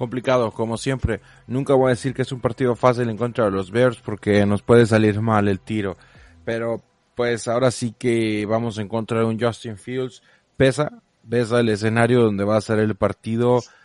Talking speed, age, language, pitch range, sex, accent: 195 wpm, 30-49, Spanish, 110-130 Hz, male, Mexican